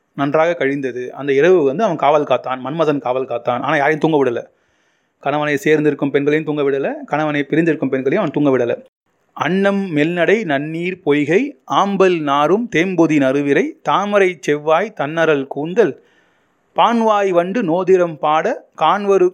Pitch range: 145-185 Hz